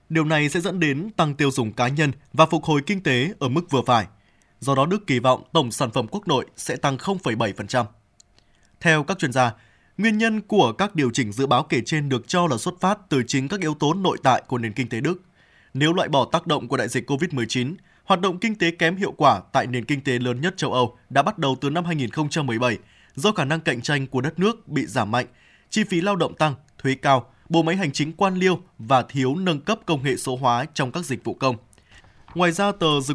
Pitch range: 125-170 Hz